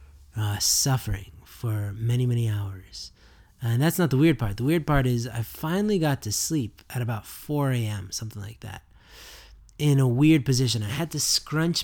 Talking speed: 180 wpm